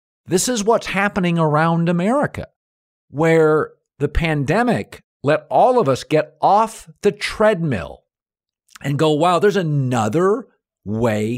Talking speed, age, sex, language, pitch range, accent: 120 wpm, 50-69, male, English, 115-195 Hz, American